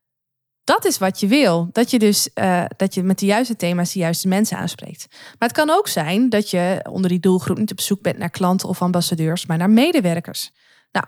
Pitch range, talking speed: 180-215 Hz, 220 wpm